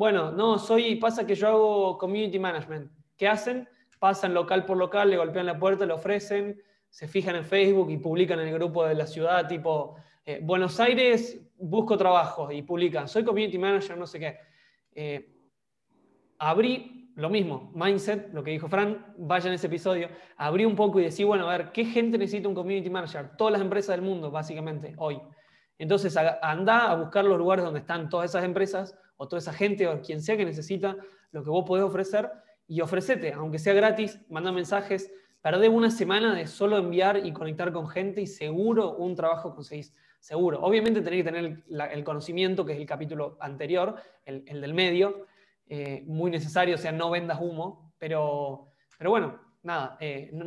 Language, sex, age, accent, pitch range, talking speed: Spanish, male, 20-39, Argentinian, 155-200 Hz, 190 wpm